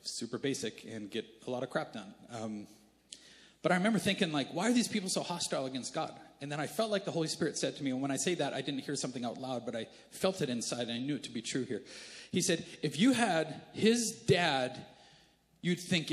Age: 40-59